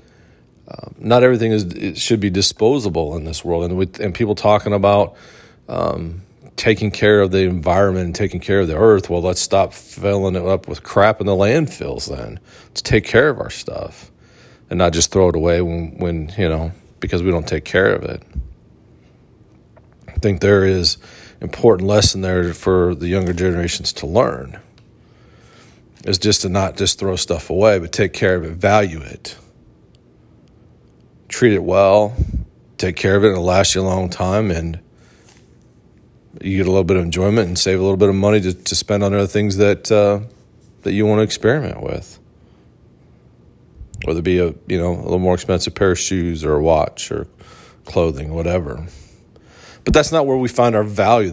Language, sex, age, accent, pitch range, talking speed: English, male, 40-59, American, 90-105 Hz, 190 wpm